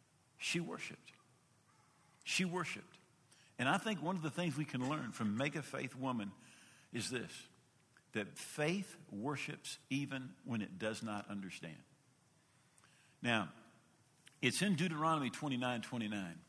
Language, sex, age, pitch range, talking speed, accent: English, male, 50-69, 105-150 Hz, 125 wpm, American